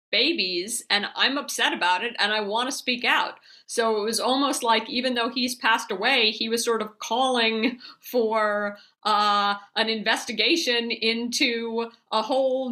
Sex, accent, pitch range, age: female, American, 200-245 Hz, 50-69